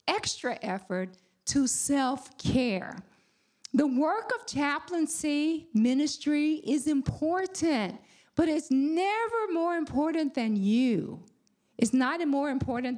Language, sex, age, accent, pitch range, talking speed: English, female, 50-69, American, 210-285 Hz, 105 wpm